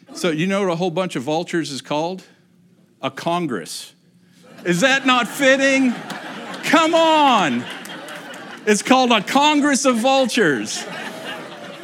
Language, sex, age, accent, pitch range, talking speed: English, male, 50-69, American, 170-225 Hz, 125 wpm